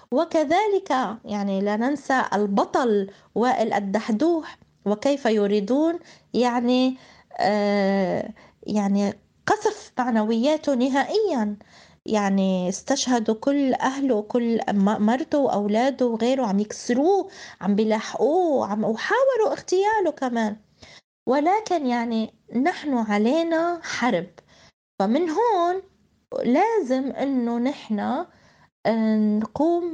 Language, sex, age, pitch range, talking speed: Arabic, female, 20-39, 205-275 Hz, 80 wpm